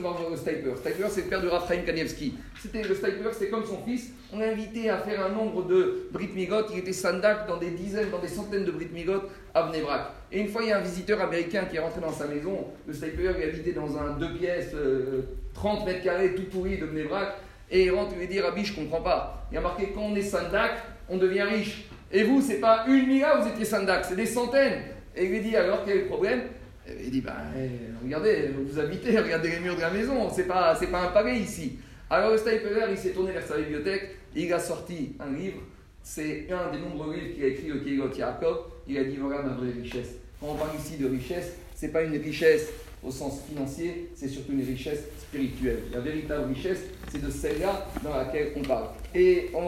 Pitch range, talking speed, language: 155-200 Hz, 230 wpm, French